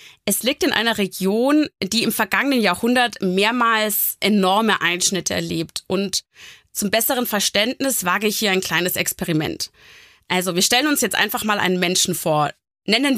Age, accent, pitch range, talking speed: 20-39, German, 180-230 Hz, 155 wpm